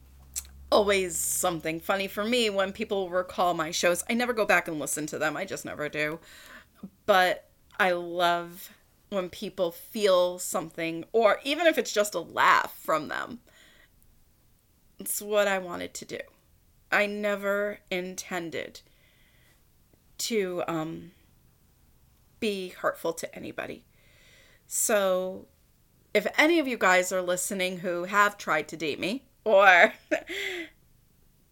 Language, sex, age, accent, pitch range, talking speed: English, female, 30-49, American, 165-210 Hz, 130 wpm